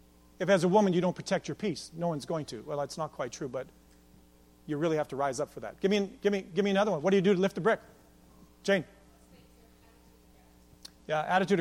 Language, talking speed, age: English, 240 wpm, 40-59